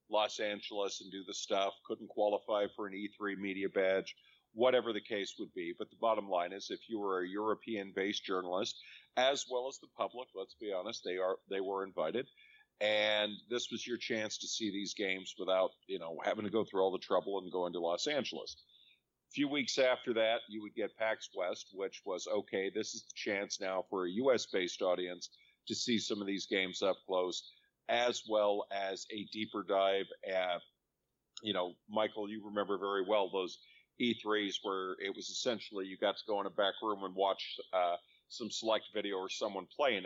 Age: 50-69